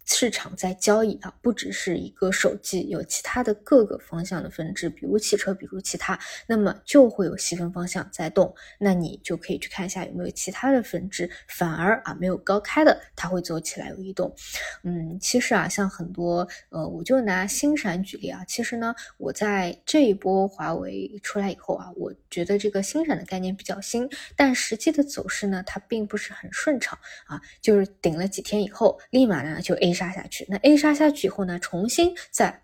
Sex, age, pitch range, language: female, 20-39, 180-215 Hz, Chinese